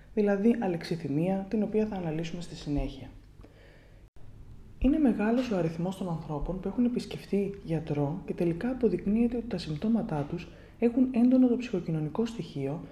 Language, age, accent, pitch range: Greek, 20-39, native, 150-230 Hz